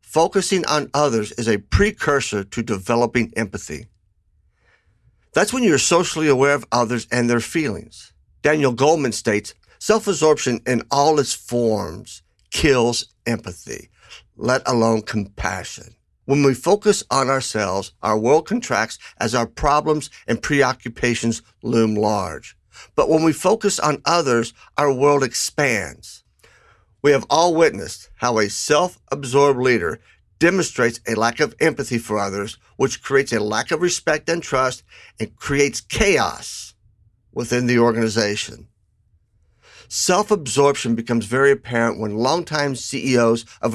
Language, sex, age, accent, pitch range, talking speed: English, male, 60-79, American, 110-145 Hz, 130 wpm